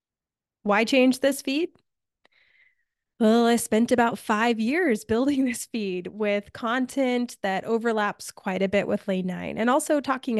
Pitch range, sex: 200-245 Hz, female